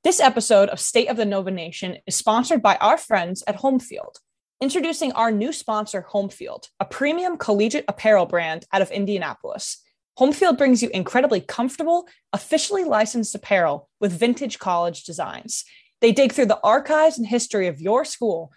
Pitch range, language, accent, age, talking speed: 195-260 Hz, English, American, 20-39, 160 wpm